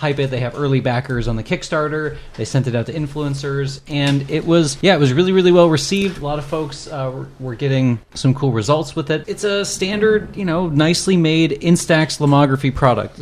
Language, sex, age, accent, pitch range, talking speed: English, male, 30-49, American, 130-160 Hz, 215 wpm